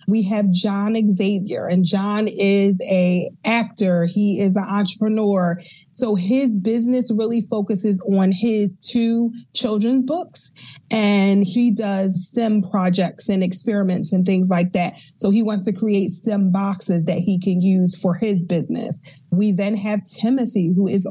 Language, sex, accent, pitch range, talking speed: English, female, American, 185-215 Hz, 155 wpm